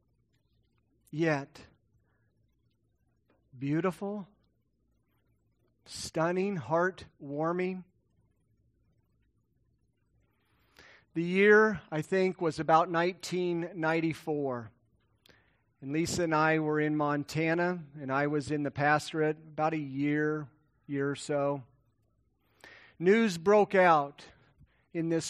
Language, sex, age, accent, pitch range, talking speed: English, male, 40-59, American, 120-165 Hz, 85 wpm